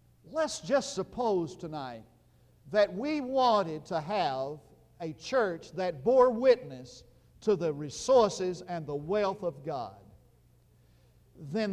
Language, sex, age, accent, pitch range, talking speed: English, male, 50-69, American, 115-175 Hz, 120 wpm